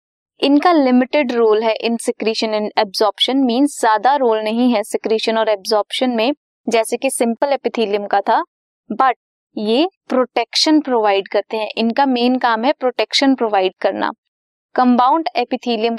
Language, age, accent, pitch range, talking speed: Hindi, 20-39, native, 225-290 Hz, 145 wpm